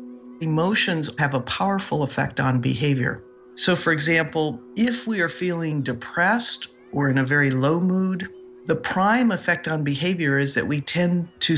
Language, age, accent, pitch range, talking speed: English, 50-69, American, 130-160 Hz, 160 wpm